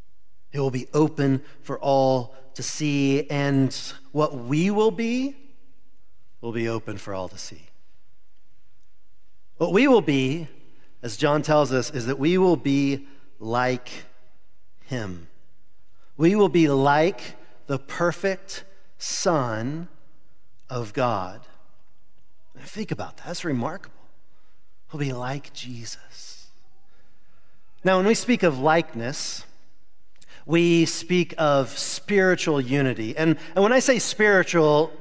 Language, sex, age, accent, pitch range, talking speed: English, male, 40-59, American, 125-180 Hz, 120 wpm